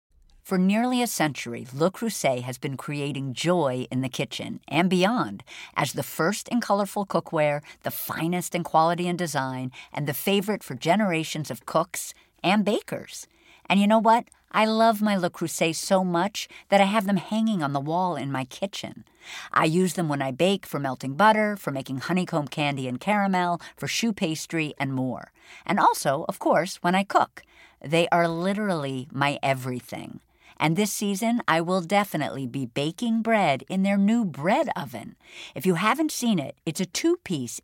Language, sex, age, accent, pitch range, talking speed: English, female, 50-69, American, 140-205 Hz, 180 wpm